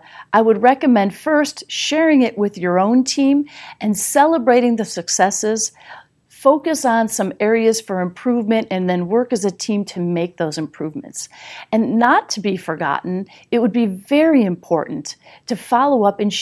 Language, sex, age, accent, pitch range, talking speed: English, female, 40-59, American, 180-245 Hz, 160 wpm